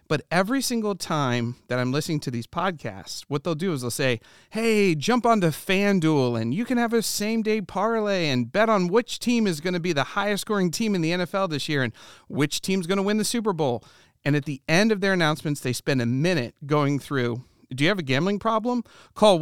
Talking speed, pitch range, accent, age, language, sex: 235 wpm, 145-200 Hz, American, 40-59, English, male